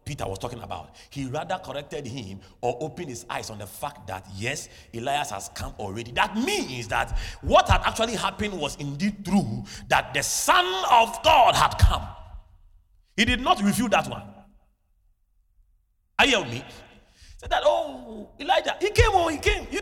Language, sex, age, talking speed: English, male, 40-59, 175 wpm